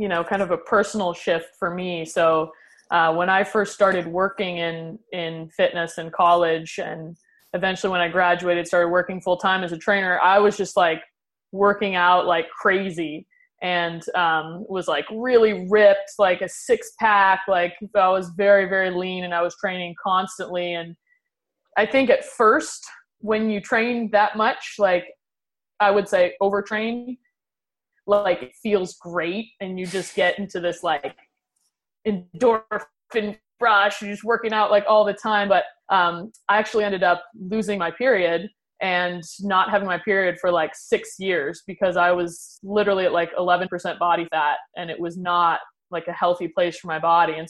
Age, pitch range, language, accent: 20-39, 175-215 Hz, Dutch, American